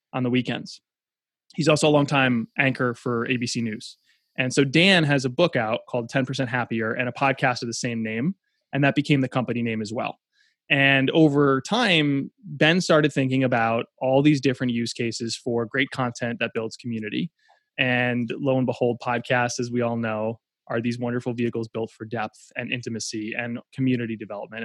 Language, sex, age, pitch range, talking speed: English, male, 20-39, 120-145 Hz, 185 wpm